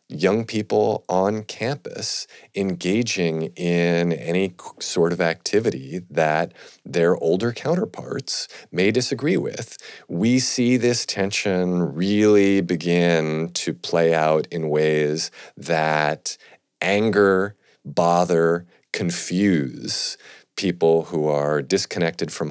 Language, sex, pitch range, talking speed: English, male, 80-100 Hz, 100 wpm